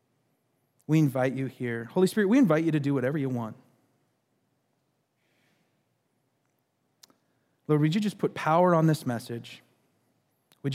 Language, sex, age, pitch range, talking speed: English, male, 30-49, 130-160 Hz, 135 wpm